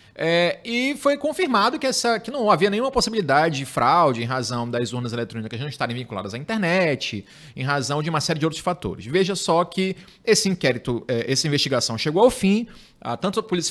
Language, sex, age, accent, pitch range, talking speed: Portuguese, male, 30-49, Brazilian, 130-185 Hz, 185 wpm